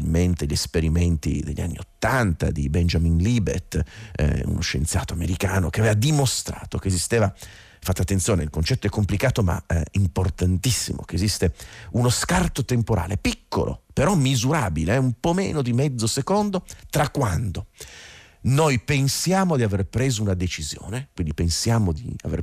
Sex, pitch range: male, 90-130 Hz